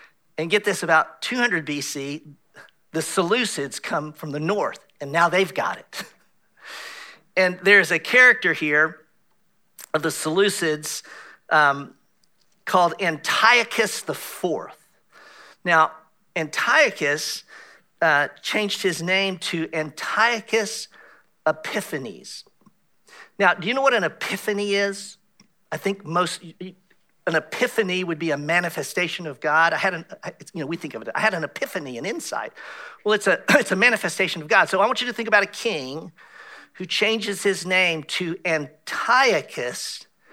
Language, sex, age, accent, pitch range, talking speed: English, male, 50-69, American, 160-205 Hz, 145 wpm